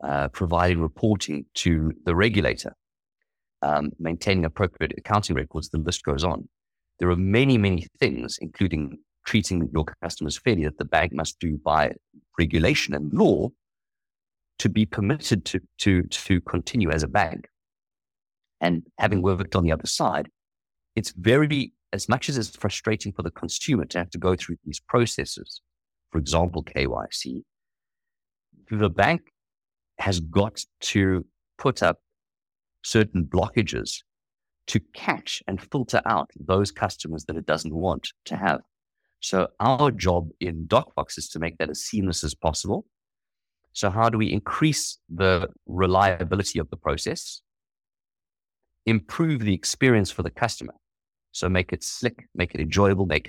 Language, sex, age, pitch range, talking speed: English, male, 50-69, 80-105 Hz, 145 wpm